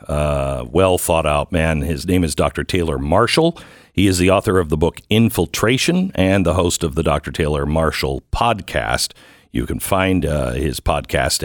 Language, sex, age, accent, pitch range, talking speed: English, male, 50-69, American, 85-120 Hz, 170 wpm